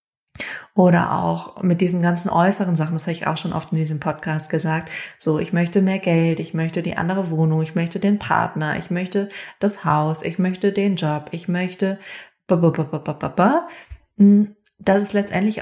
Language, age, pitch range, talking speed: German, 30-49, 160-190 Hz, 170 wpm